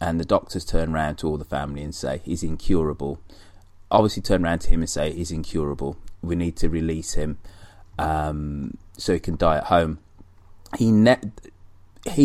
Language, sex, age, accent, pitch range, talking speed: English, male, 30-49, British, 80-95 Hz, 170 wpm